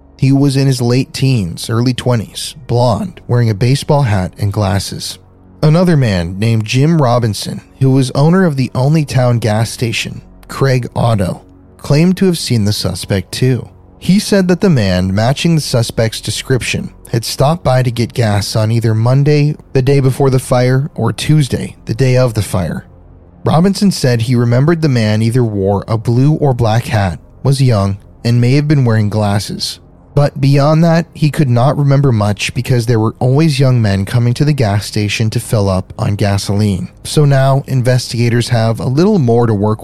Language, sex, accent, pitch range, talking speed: English, male, American, 105-135 Hz, 185 wpm